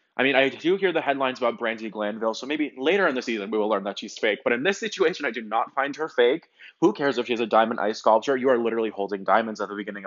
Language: English